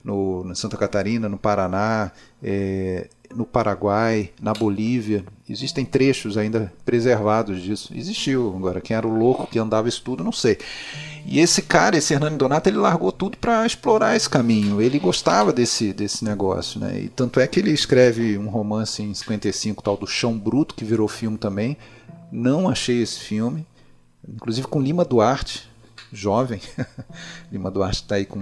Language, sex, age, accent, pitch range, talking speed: Portuguese, male, 40-59, Brazilian, 100-125 Hz, 165 wpm